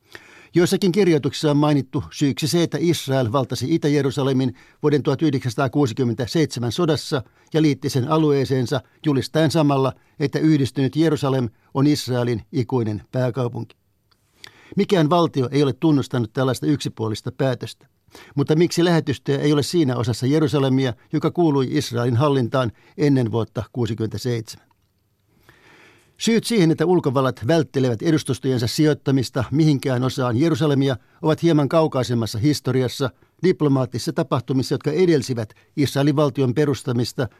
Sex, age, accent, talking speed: male, 60-79, native, 110 wpm